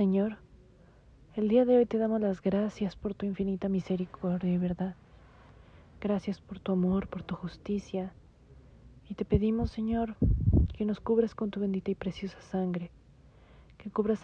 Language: Spanish